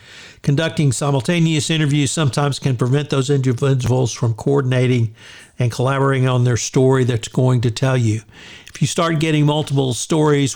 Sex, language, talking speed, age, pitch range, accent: male, English, 150 wpm, 60-79, 130-160 Hz, American